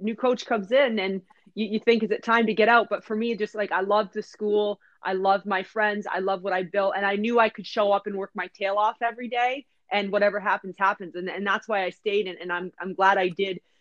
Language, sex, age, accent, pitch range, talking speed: English, female, 30-49, American, 195-235 Hz, 275 wpm